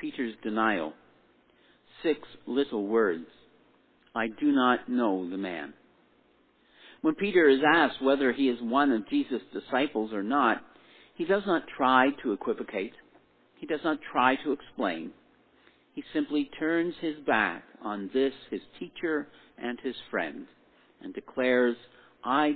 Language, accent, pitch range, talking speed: English, American, 100-160 Hz, 135 wpm